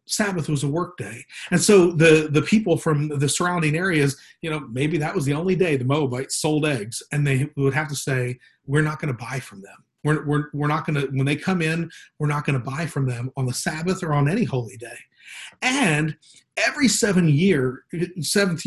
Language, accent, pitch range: English, American, 140-180 Hz